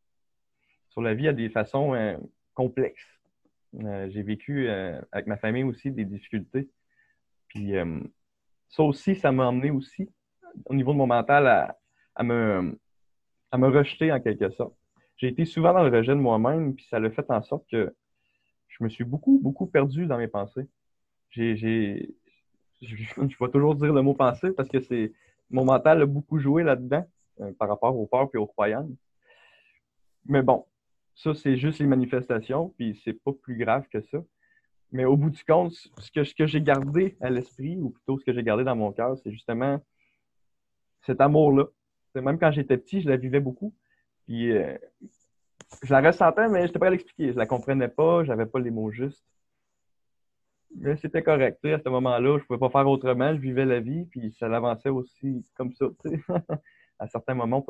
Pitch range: 115-145 Hz